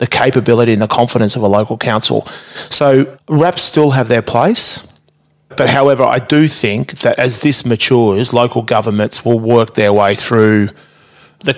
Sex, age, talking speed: male, 30-49, 165 wpm